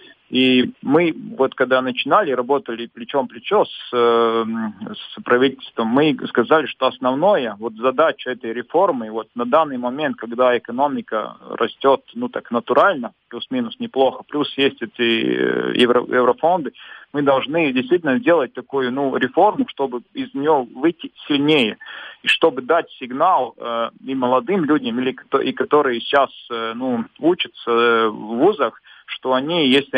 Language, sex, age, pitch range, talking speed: Russian, male, 40-59, 125-155 Hz, 135 wpm